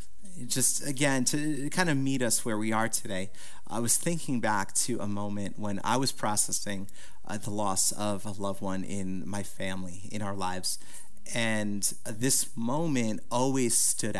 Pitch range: 100-125 Hz